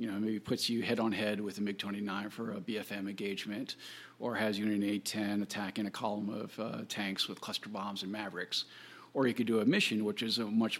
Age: 40-59